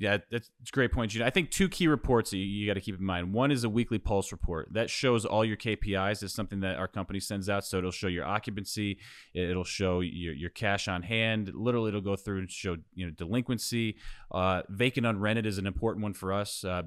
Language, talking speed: English, 245 wpm